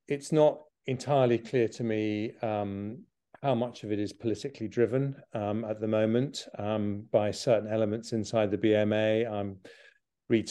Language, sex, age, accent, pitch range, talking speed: English, male, 40-59, British, 100-115 Hz, 155 wpm